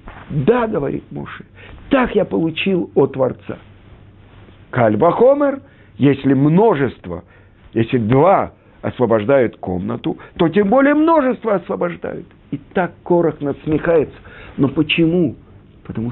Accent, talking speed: native, 100 wpm